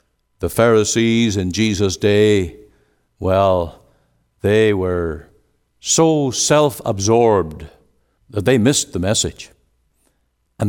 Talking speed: 90 wpm